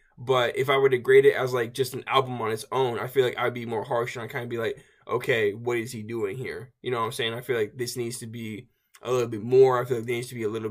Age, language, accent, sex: 20-39, English, American, male